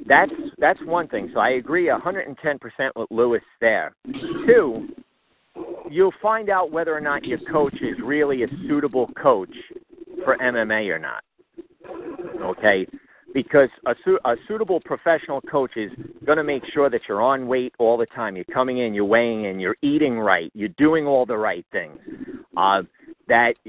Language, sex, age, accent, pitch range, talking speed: English, male, 50-69, American, 125-210 Hz, 165 wpm